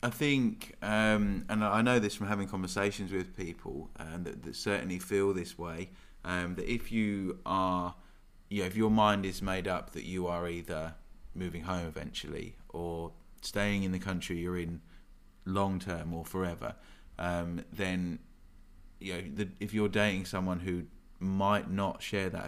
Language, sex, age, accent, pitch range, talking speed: English, male, 20-39, British, 85-95 Hz, 175 wpm